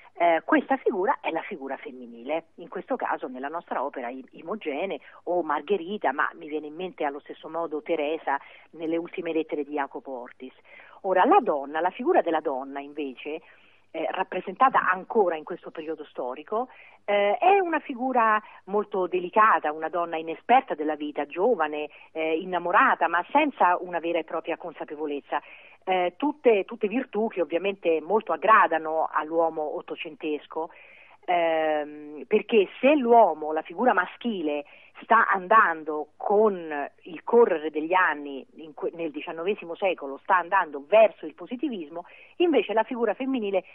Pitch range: 155-215 Hz